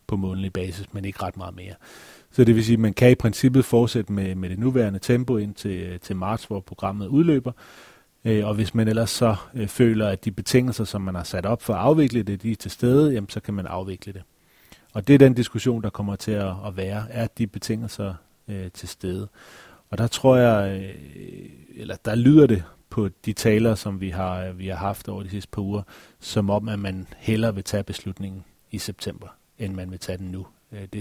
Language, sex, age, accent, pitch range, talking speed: Danish, male, 30-49, native, 95-115 Hz, 220 wpm